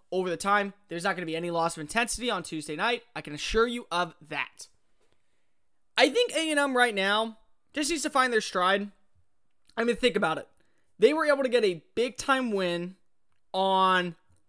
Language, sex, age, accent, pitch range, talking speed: English, male, 20-39, American, 175-235 Hz, 190 wpm